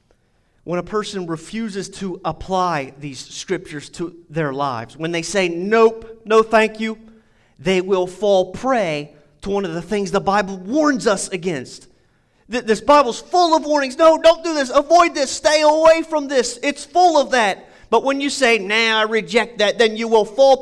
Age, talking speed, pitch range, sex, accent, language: 30-49, 185 wpm, 185-265 Hz, male, American, English